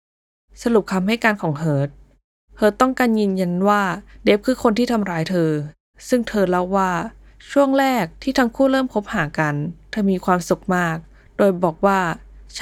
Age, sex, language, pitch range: 10-29, female, Thai, 160-215 Hz